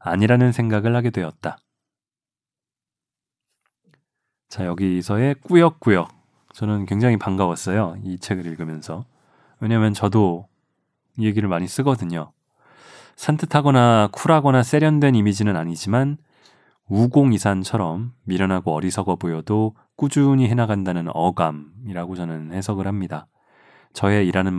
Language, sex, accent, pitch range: Korean, male, native, 95-130 Hz